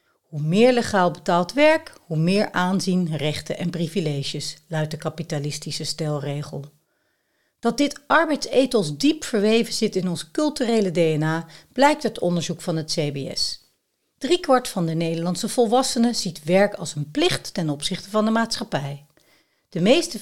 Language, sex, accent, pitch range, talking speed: Dutch, female, Dutch, 155-225 Hz, 140 wpm